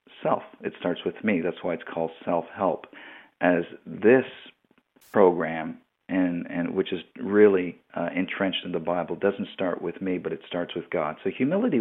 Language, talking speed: English, 175 wpm